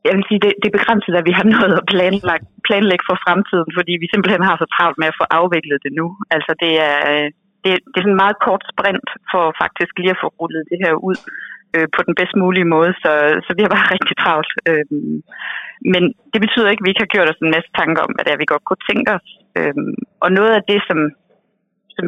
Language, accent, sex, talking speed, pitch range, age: Danish, native, female, 245 wpm, 165-200 Hz, 30-49